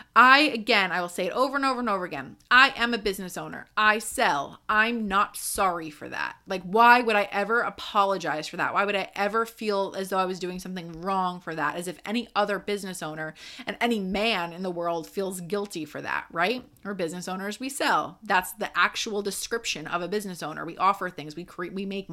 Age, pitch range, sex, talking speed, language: 30-49, 180-225 Hz, female, 225 wpm, English